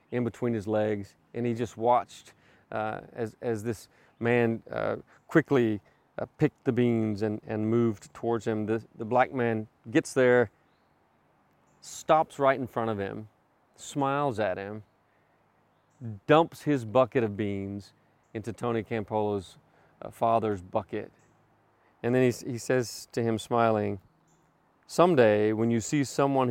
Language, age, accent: English, 30-49, American